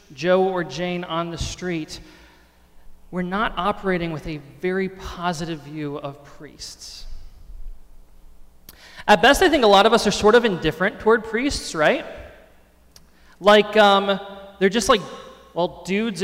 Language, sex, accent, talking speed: English, male, American, 140 wpm